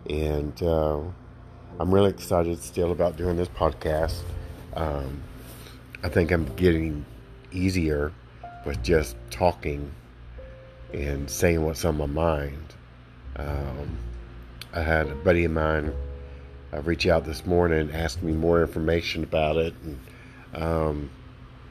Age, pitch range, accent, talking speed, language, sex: 50-69, 70-90 Hz, American, 125 wpm, English, male